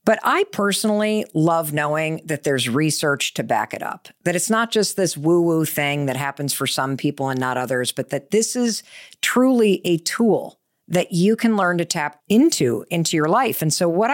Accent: American